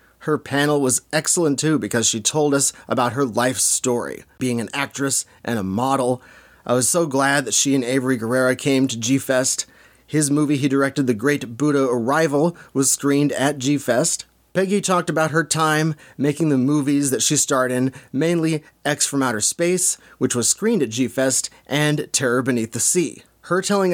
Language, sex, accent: English, male, American